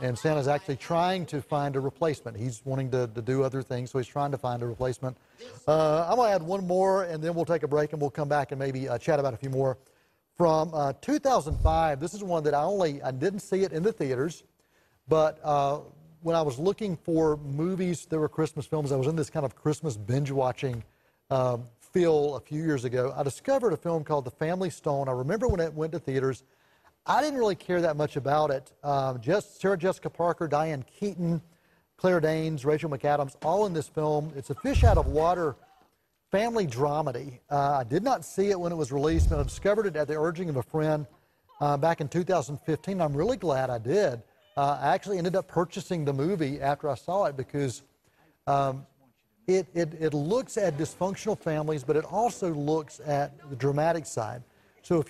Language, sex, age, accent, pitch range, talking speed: English, male, 40-59, American, 140-170 Hz, 205 wpm